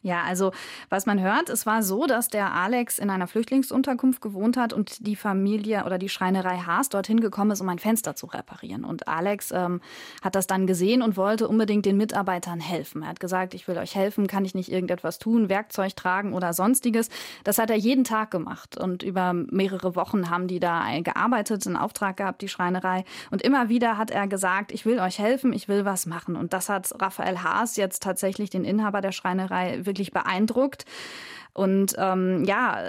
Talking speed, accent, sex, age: 200 wpm, German, female, 20-39